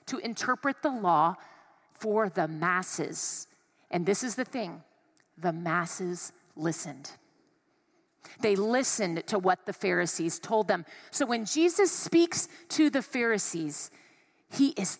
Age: 40-59